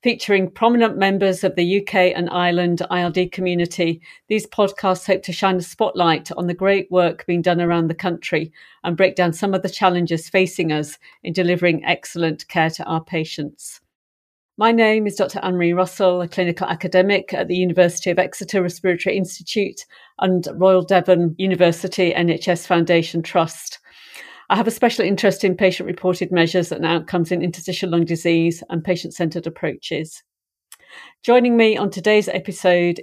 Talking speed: 160 wpm